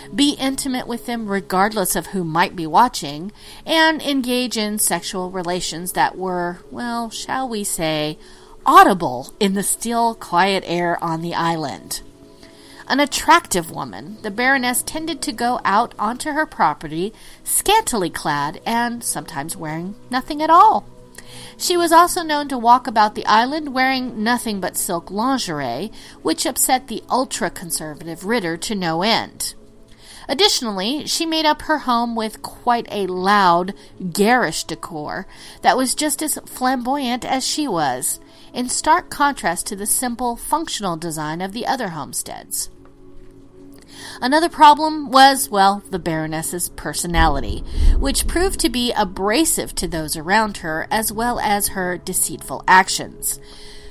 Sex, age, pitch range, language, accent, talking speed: female, 40-59, 170-260 Hz, English, American, 140 wpm